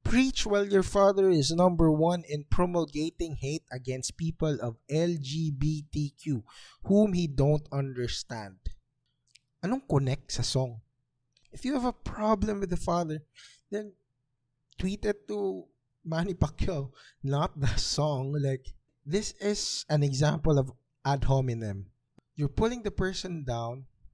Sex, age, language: male, 20-39, English